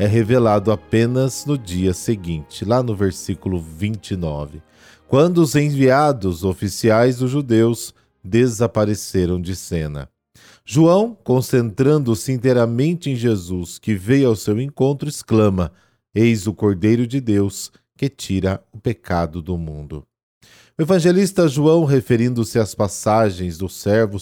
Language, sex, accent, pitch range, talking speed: Portuguese, male, Brazilian, 95-120 Hz, 120 wpm